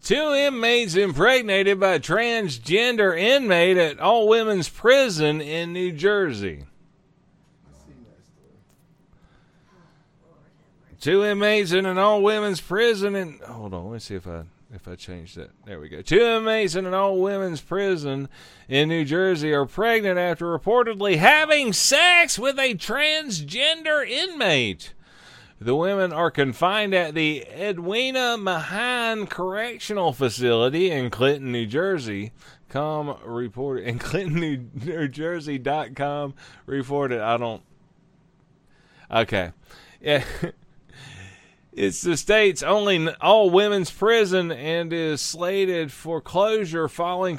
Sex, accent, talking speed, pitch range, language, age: male, American, 115 wpm, 140-200 Hz, English, 40-59